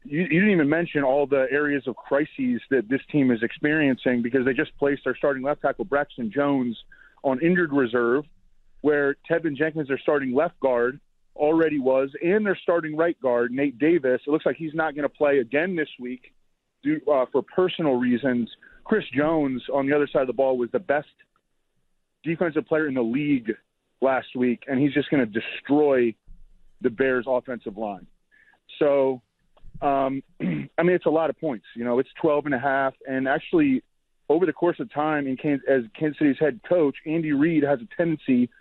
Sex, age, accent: male, 30-49, American